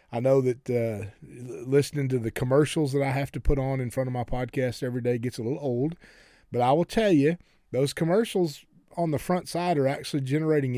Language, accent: English, American